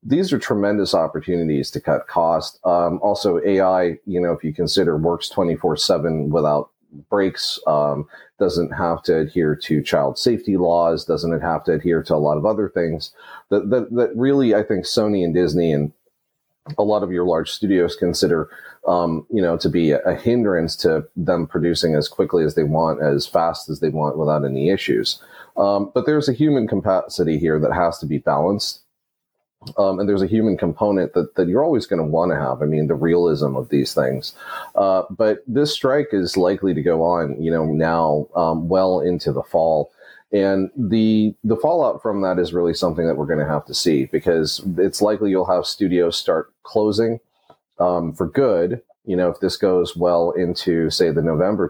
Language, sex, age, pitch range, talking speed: English, male, 30-49, 80-100 Hz, 190 wpm